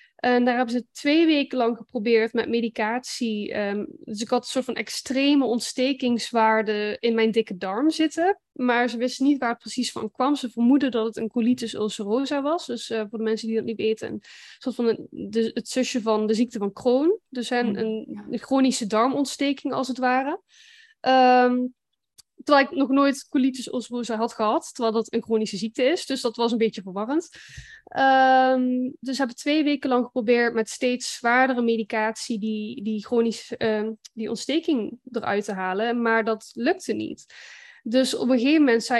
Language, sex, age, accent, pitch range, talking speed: Dutch, female, 20-39, Dutch, 225-270 Hz, 180 wpm